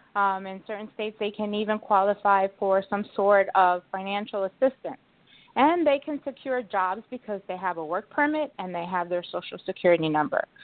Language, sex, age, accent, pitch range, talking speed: English, female, 30-49, American, 185-225 Hz, 180 wpm